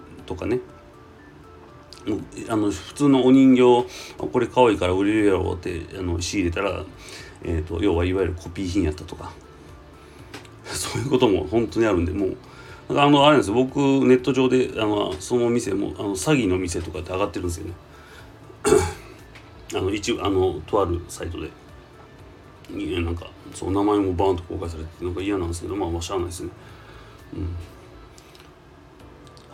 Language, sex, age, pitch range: Japanese, male, 40-59, 85-120 Hz